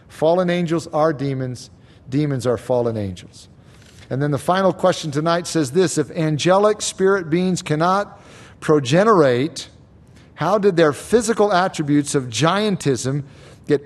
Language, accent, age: English, American, 50-69